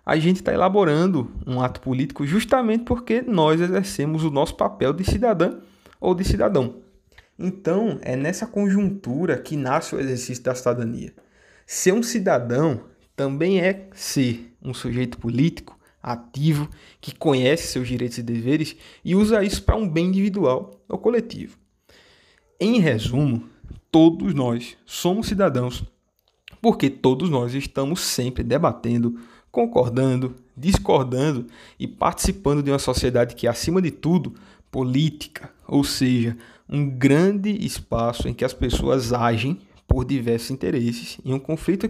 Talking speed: 135 wpm